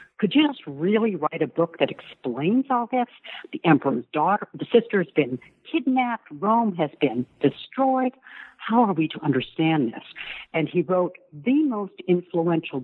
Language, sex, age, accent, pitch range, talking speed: English, female, 60-79, American, 145-205 Hz, 160 wpm